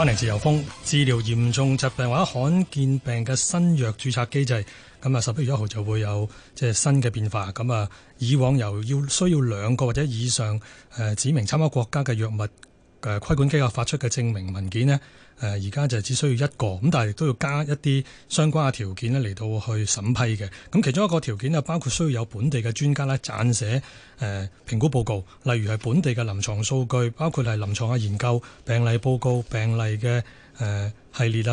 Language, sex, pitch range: Chinese, male, 110-145 Hz